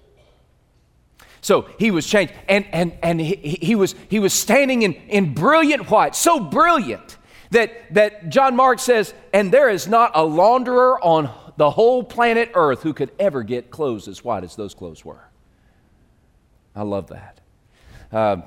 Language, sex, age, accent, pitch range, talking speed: English, male, 40-59, American, 155-225 Hz, 165 wpm